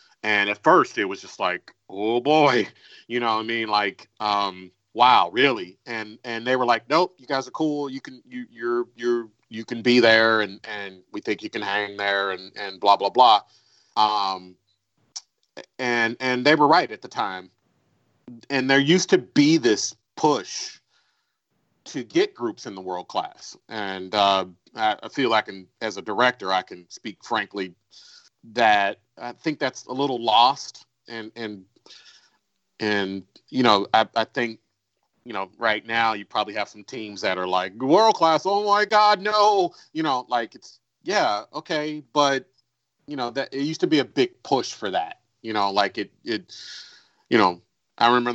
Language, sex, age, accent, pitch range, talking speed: English, male, 40-59, American, 105-145 Hz, 185 wpm